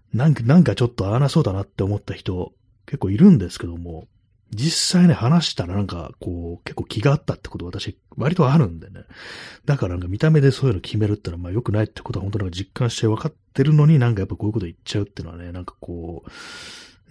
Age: 30-49